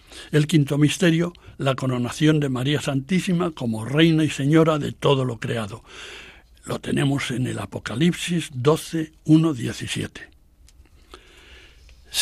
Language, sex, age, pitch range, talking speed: Spanish, male, 60-79, 135-170 Hz, 110 wpm